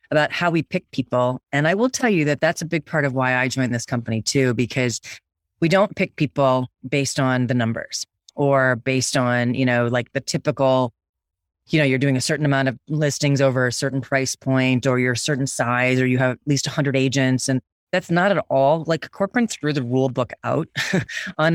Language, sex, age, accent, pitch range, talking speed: English, female, 30-49, American, 125-150 Hz, 220 wpm